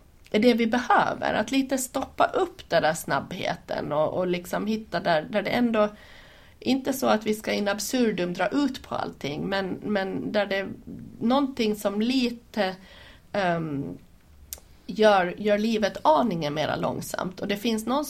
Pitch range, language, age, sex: 185-240 Hz, Swedish, 30-49, female